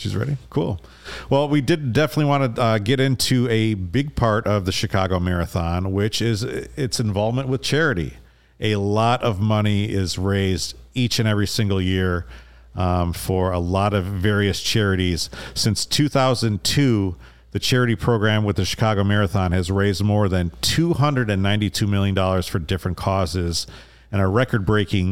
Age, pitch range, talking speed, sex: 40-59, 95-115 Hz, 155 wpm, male